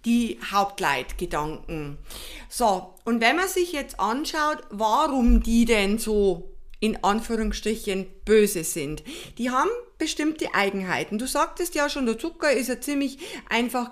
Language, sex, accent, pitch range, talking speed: German, female, German, 205-290 Hz, 135 wpm